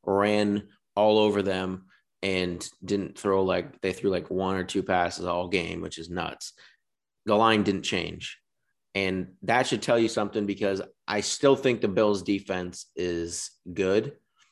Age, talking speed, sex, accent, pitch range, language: 30-49, 160 wpm, male, American, 95-110 Hz, English